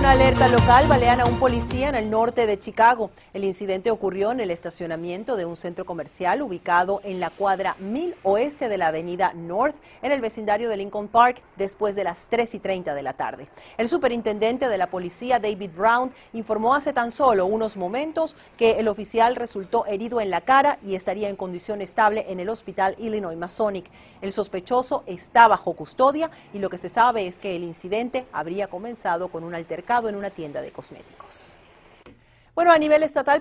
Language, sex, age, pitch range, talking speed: Spanish, female, 40-59, 185-240 Hz, 190 wpm